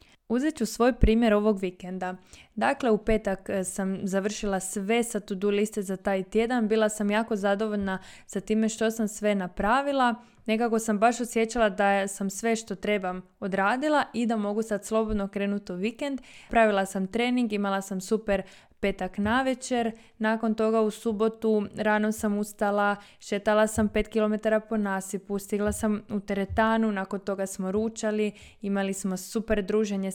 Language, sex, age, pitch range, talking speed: Croatian, female, 20-39, 195-230 Hz, 160 wpm